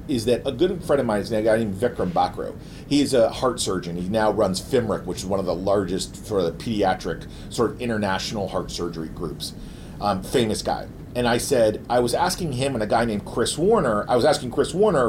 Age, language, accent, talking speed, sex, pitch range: 40-59, English, American, 225 wpm, male, 115-150 Hz